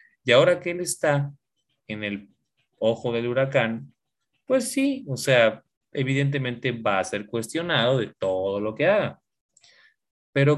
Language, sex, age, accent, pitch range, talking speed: Spanish, male, 20-39, Mexican, 105-140 Hz, 140 wpm